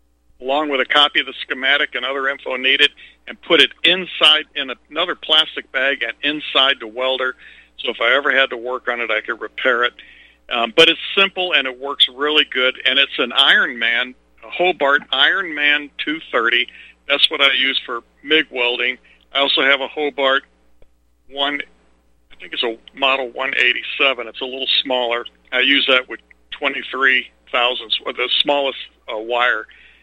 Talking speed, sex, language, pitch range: 170 wpm, male, English, 120-155 Hz